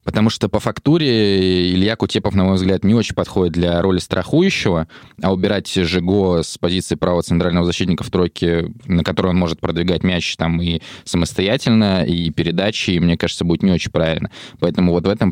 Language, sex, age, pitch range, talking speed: Russian, male, 20-39, 85-100 Hz, 180 wpm